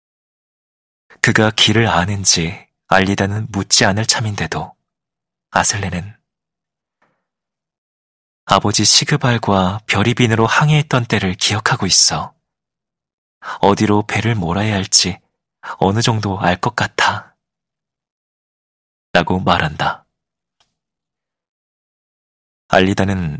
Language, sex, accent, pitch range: Korean, male, native, 95-110 Hz